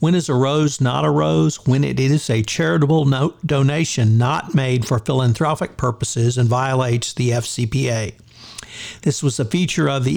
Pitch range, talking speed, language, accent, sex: 120-145 Hz, 165 wpm, English, American, male